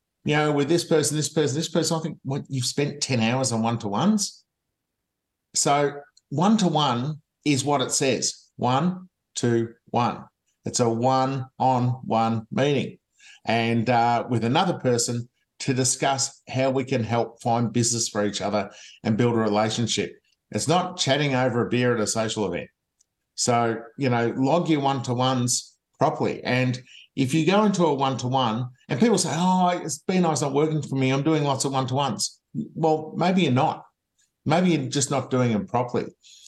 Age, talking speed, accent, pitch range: 50-69, 185 wpm, Australian, 115-145 Hz